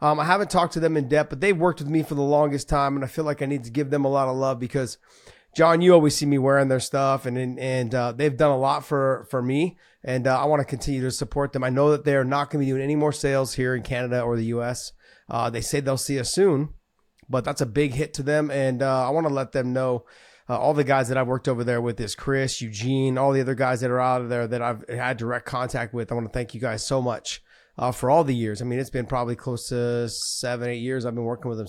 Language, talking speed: English, 295 wpm